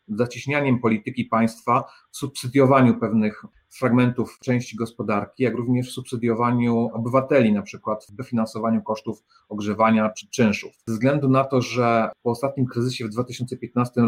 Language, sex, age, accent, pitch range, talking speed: Polish, male, 40-59, native, 110-130 Hz, 135 wpm